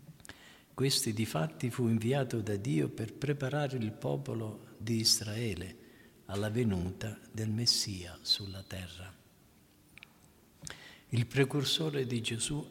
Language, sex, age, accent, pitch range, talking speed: Italian, male, 50-69, native, 100-125 Hz, 110 wpm